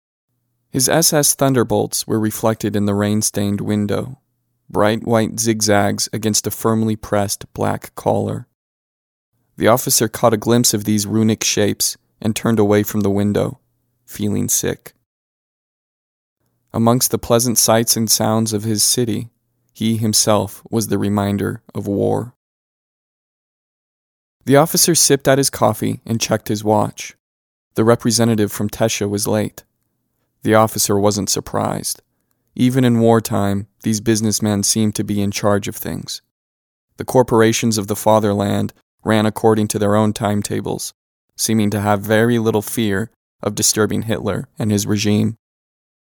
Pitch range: 105-120 Hz